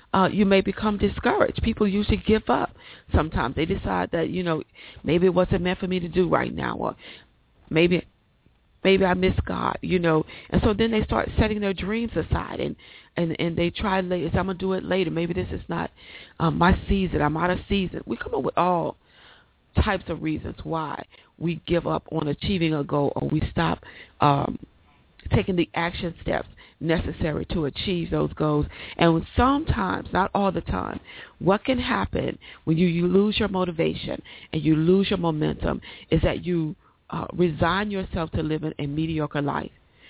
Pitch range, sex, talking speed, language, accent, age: 150-185 Hz, female, 190 wpm, English, American, 40-59